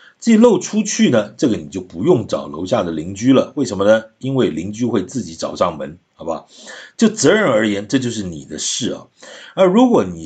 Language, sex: Chinese, male